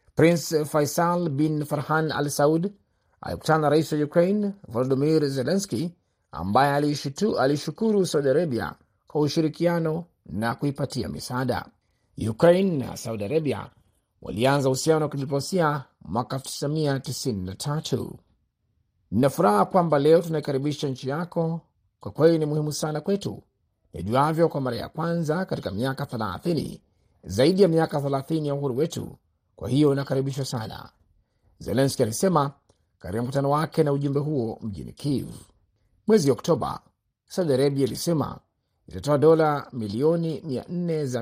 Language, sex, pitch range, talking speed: Swahili, male, 125-160 Hz, 120 wpm